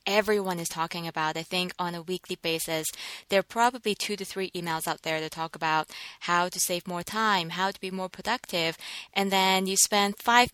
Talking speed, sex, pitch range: 210 wpm, female, 170-195 Hz